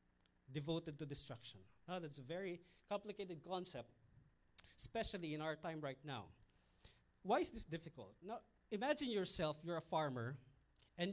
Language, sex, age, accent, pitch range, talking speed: English, male, 40-59, Filipino, 140-200 Hz, 140 wpm